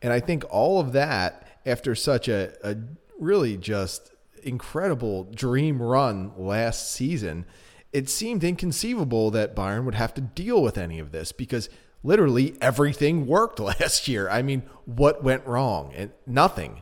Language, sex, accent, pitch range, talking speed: English, male, American, 100-135 Hz, 155 wpm